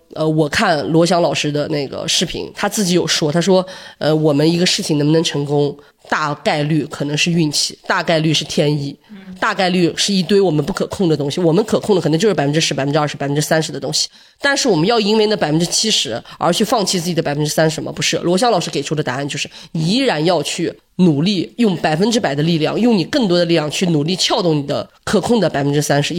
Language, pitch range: Chinese, 155-185 Hz